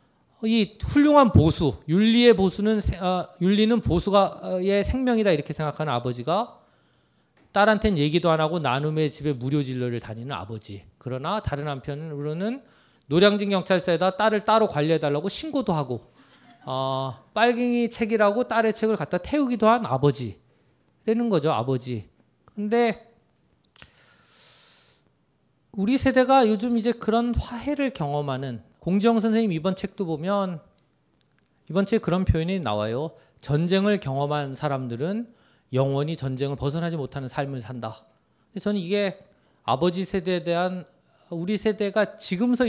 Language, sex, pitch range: Korean, male, 145-210 Hz